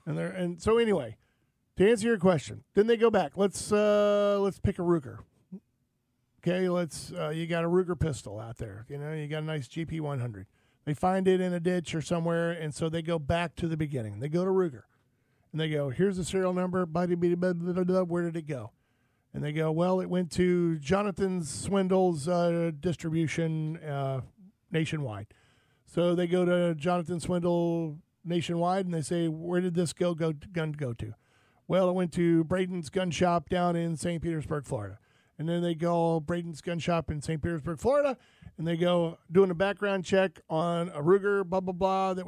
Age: 40-59